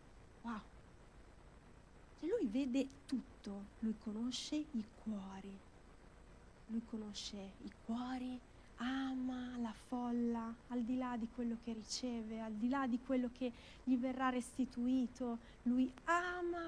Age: 30-49